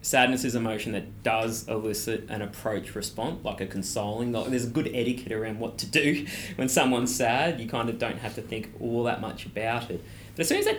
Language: English